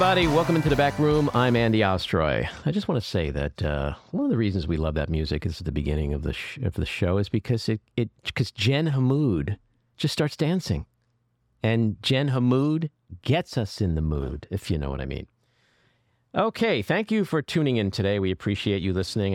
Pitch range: 85-125 Hz